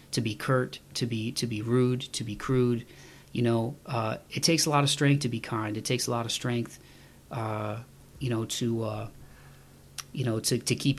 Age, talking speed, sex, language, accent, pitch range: 30-49, 215 wpm, male, English, American, 115-135 Hz